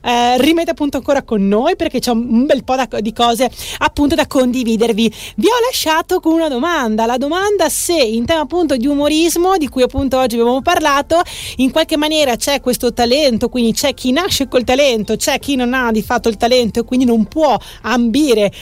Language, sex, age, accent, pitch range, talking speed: Italian, female, 30-49, native, 225-285 Hz, 200 wpm